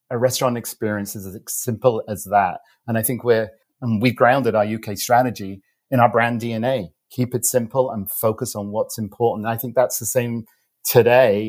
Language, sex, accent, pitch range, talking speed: English, male, British, 105-125 Hz, 190 wpm